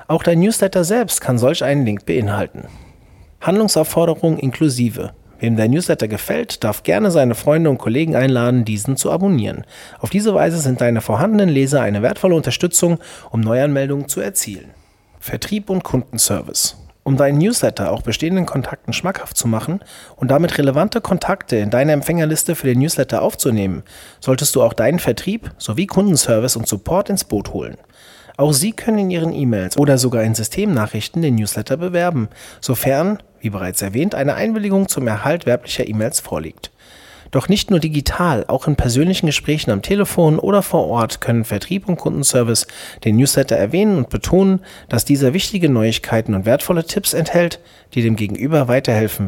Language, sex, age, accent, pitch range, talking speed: German, male, 30-49, German, 110-175 Hz, 160 wpm